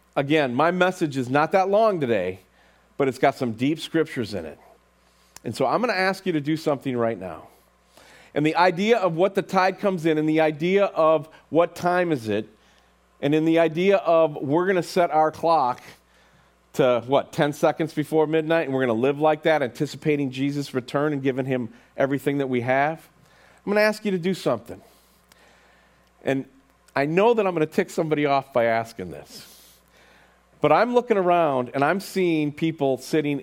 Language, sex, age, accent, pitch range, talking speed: English, male, 40-59, American, 140-190 Hz, 195 wpm